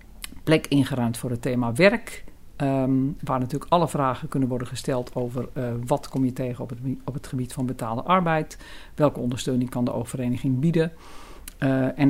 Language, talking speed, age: Dutch, 155 wpm, 50-69